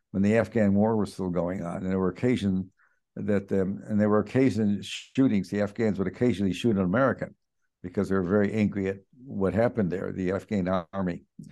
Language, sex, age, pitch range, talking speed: English, male, 60-79, 95-110 Hz, 200 wpm